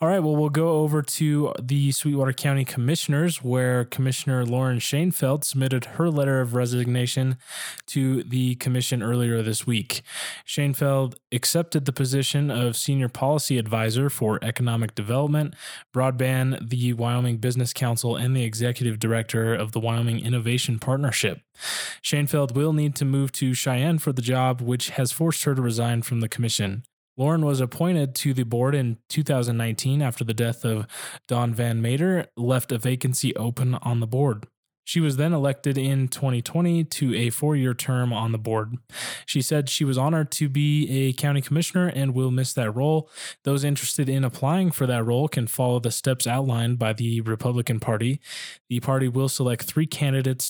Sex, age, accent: male, 20-39, American